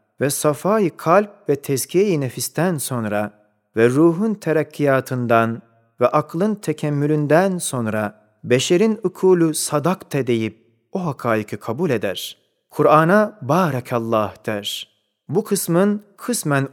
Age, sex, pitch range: 40-59, male, 115-165 Hz